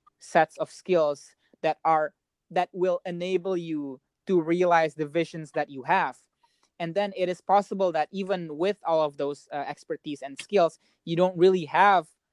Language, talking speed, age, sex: Indonesian, 170 wpm, 20-39, male